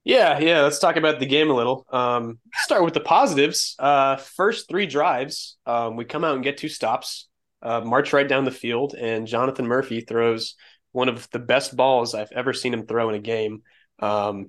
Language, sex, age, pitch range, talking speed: English, male, 20-39, 115-145 Hz, 205 wpm